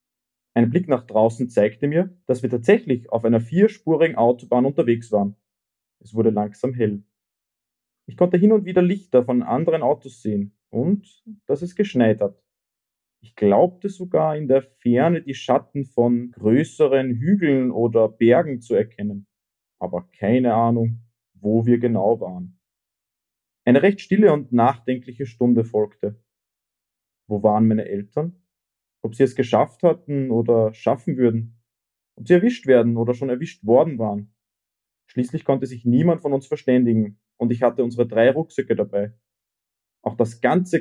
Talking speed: 150 wpm